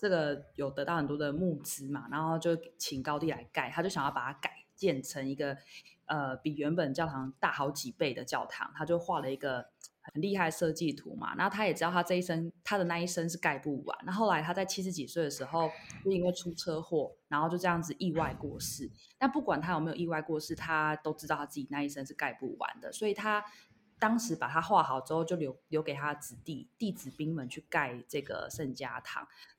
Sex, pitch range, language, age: female, 145-180 Hz, Chinese, 20-39